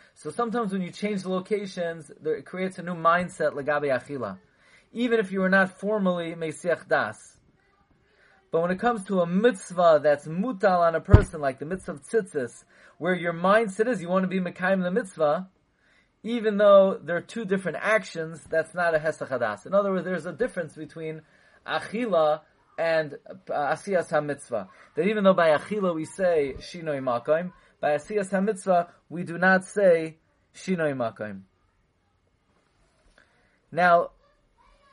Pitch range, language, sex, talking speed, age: 155-195 Hz, English, male, 155 wpm, 30-49